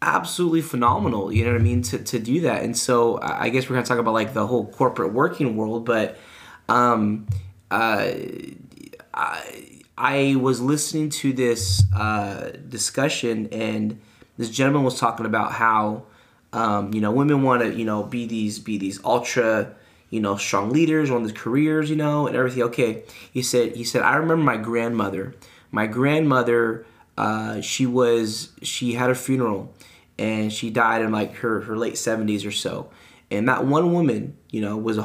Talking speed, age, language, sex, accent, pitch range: 180 wpm, 20-39, English, male, American, 110-130 Hz